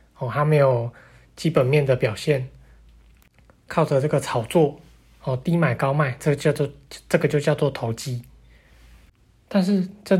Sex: male